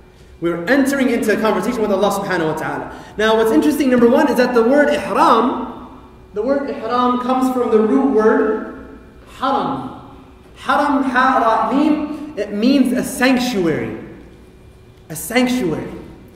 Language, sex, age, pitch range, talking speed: English, male, 30-49, 215-265 Hz, 140 wpm